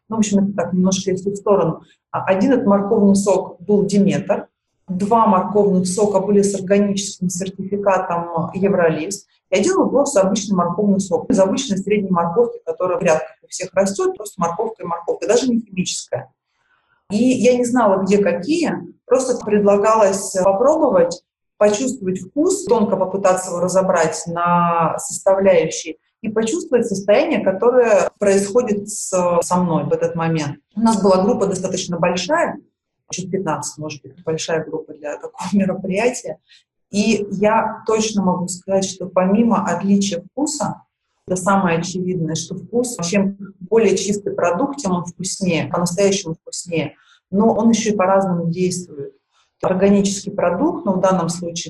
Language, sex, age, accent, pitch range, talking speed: Russian, female, 30-49, native, 180-215 Hz, 145 wpm